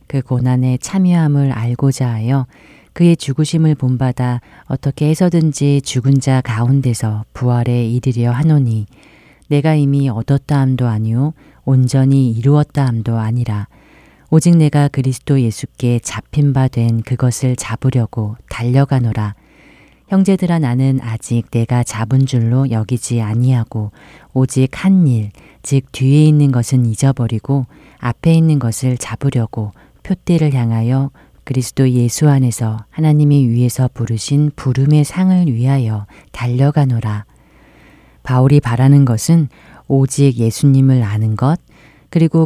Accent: native